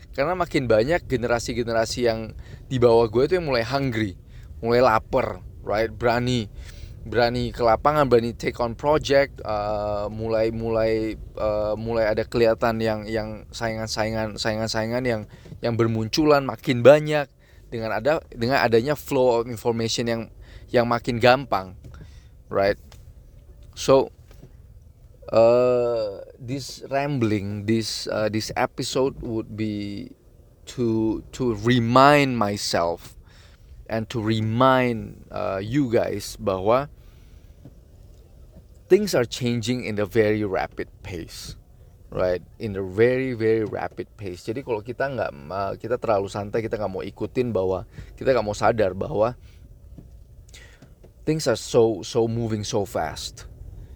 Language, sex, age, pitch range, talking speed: Indonesian, male, 20-39, 105-125 Hz, 120 wpm